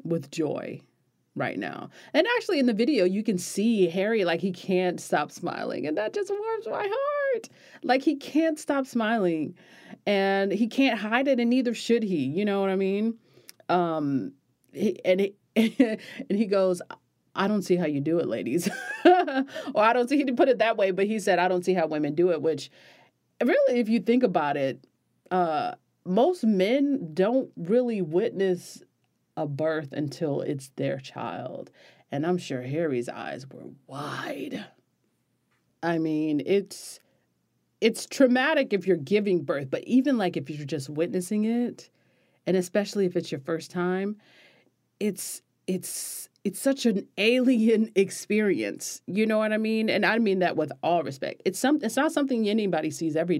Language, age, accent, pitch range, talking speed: English, 30-49, American, 175-240 Hz, 175 wpm